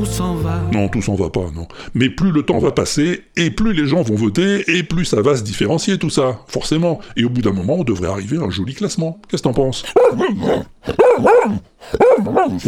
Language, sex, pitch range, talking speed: French, female, 110-165 Hz, 205 wpm